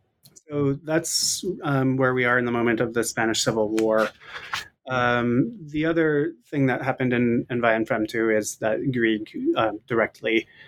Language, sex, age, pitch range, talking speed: English, male, 20-39, 110-130 Hz, 165 wpm